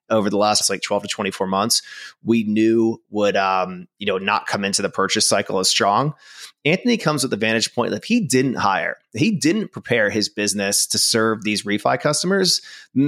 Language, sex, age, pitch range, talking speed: English, male, 30-49, 100-125 Hz, 205 wpm